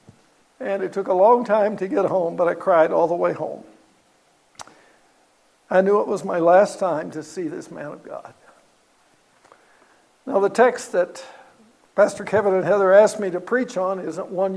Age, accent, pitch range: 60-79, American, 185-245 Hz